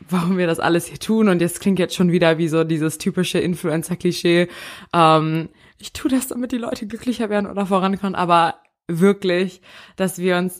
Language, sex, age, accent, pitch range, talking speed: German, female, 20-39, German, 175-200 Hz, 185 wpm